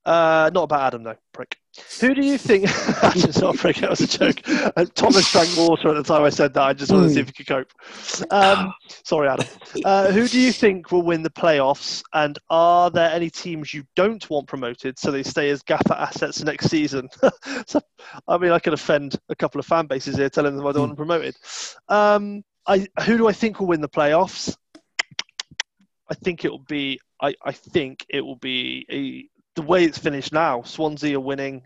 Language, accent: English, British